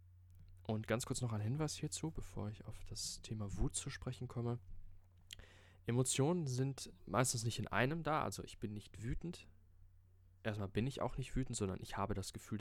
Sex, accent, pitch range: male, German, 90-110 Hz